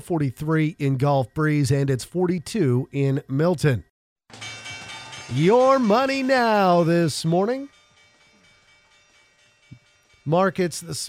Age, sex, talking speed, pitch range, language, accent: 40-59, male, 85 wpm, 130-175 Hz, English, American